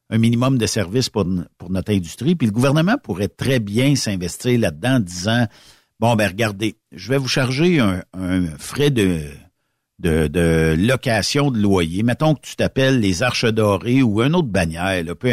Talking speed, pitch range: 190 wpm, 105-140 Hz